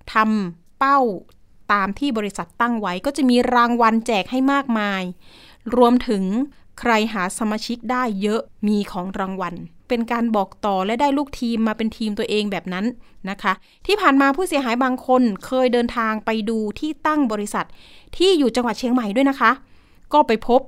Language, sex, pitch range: Thai, female, 205-265 Hz